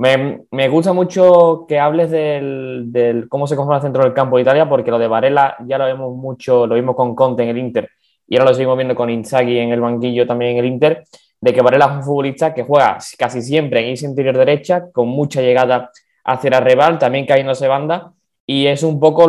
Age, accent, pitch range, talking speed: 20-39, Spanish, 120-145 Hz, 225 wpm